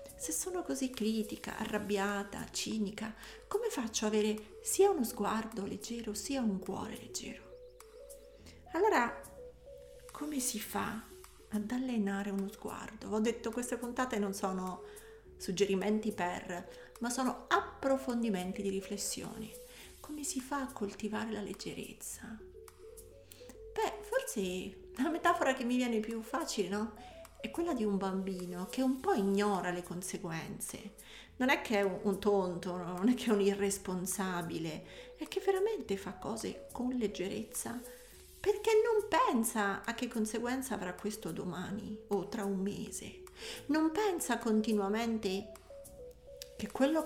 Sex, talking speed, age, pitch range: female, 135 wpm, 40-59, 200-275 Hz